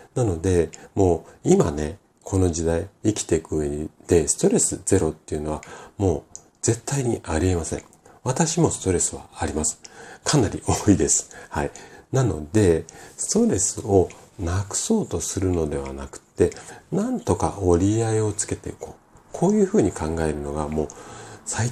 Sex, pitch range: male, 80-125 Hz